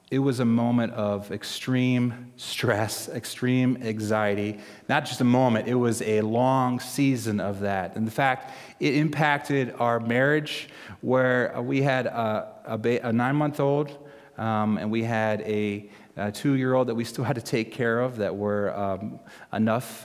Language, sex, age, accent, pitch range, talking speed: English, male, 30-49, American, 105-130 Hz, 175 wpm